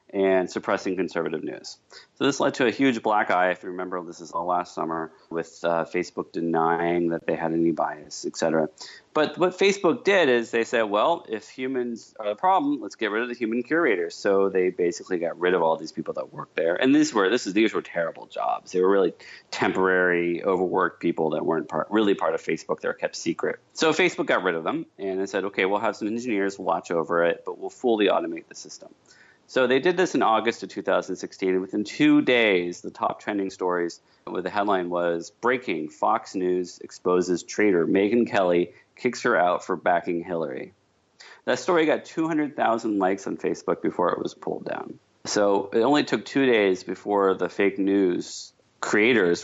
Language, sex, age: English, male, 30-49